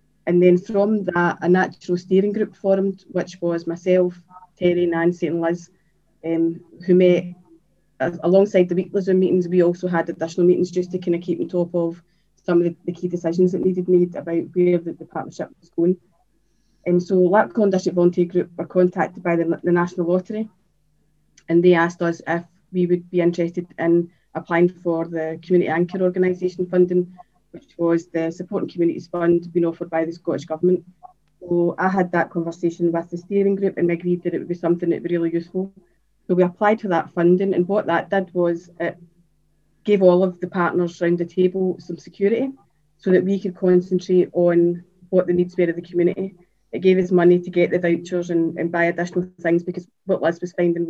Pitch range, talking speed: 170-185 Hz, 200 wpm